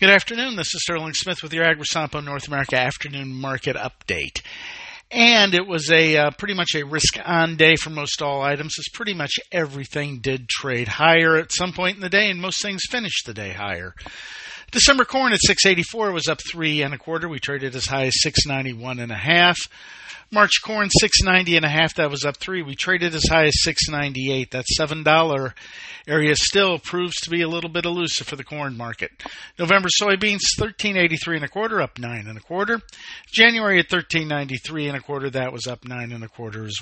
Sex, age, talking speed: male, 50-69, 215 wpm